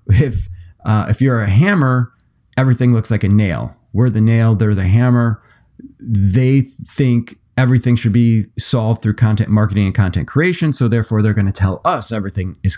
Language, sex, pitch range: English, male, 95-125 Hz